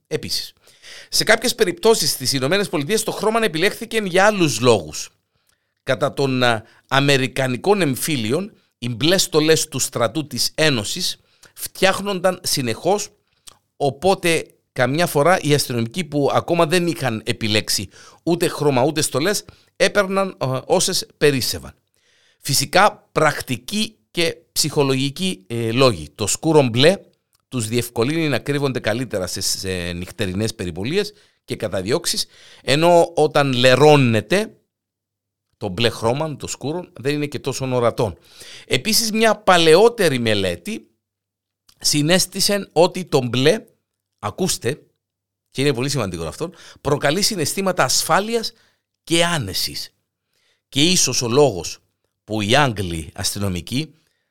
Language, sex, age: Greek, male, 50-69